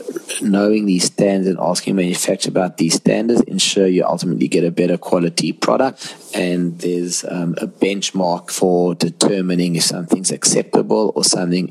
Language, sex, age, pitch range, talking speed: English, male, 30-49, 90-105 Hz, 150 wpm